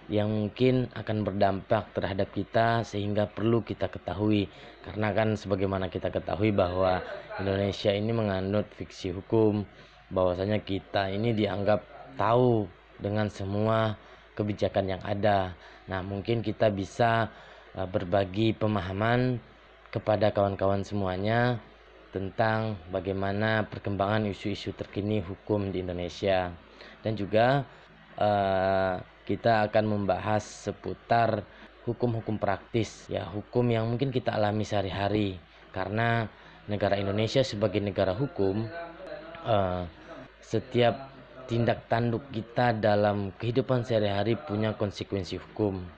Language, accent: Indonesian, native